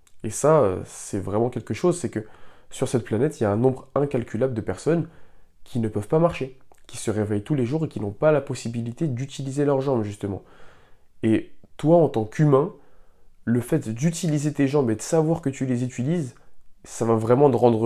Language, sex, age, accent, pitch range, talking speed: French, male, 20-39, French, 110-135 Hz, 210 wpm